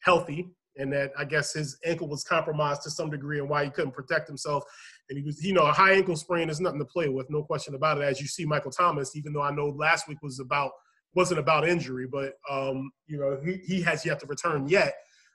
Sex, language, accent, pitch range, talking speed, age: male, English, American, 145-180 Hz, 245 wpm, 30-49